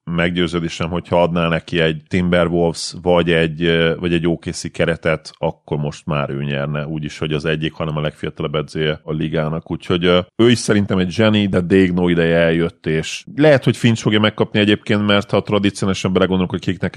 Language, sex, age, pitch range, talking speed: Hungarian, male, 30-49, 80-95 Hz, 180 wpm